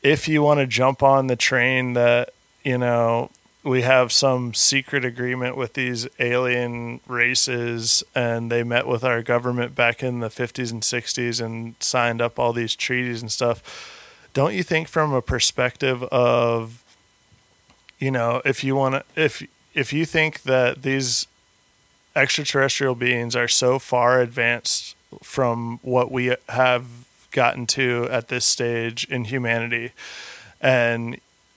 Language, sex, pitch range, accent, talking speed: English, male, 120-130 Hz, American, 145 wpm